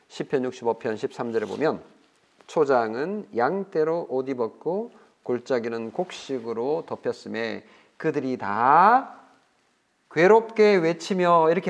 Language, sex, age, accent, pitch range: Korean, male, 40-59, native, 130-205 Hz